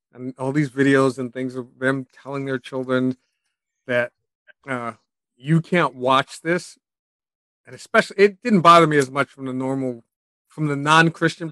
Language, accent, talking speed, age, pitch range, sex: English, American, 160 wpm, 40-59, 125-170 Hz, male